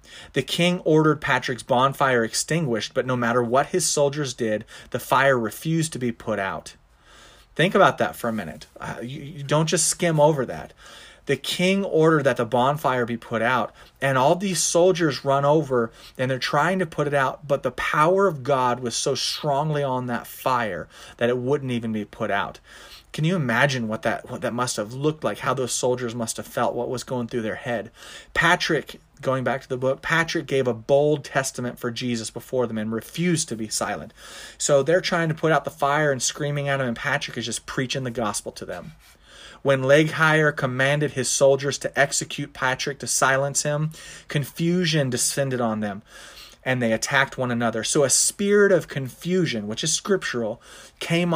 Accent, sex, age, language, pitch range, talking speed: American, male, 30-49, English, 125-155 Hz, 195 wpm